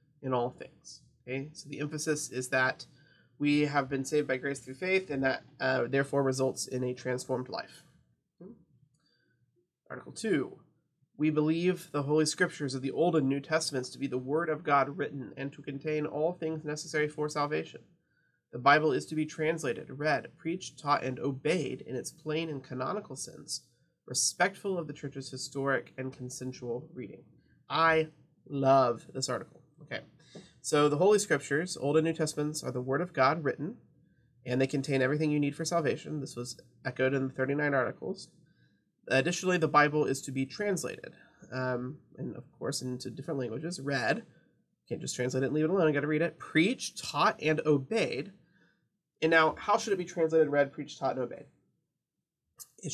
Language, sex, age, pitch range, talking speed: English, male, 30-49, 130-155 Hz, 180 wpm